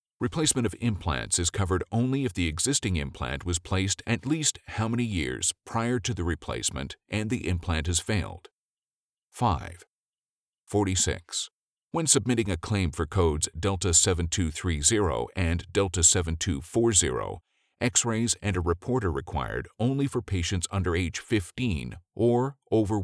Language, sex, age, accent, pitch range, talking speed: English, male, 50-69, American, 85-110 Hz, 130 wpm